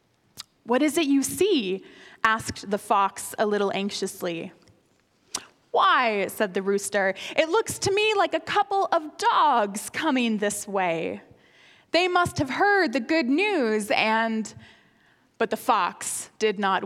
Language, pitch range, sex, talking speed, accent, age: English, 195-300 Hz, female, 140 wpm, American, 20-39